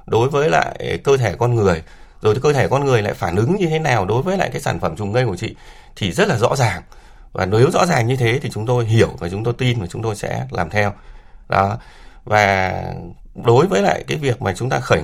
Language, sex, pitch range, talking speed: Vietnamese, male, 100-135 Hz, 255 wpm